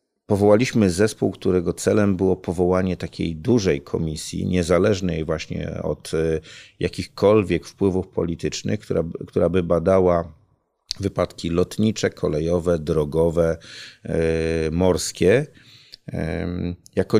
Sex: male